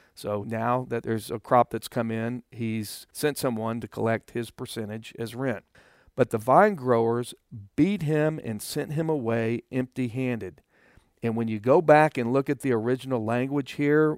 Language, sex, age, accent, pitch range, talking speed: English, male, 50-69, American, 115-145 Hz, 175 wpm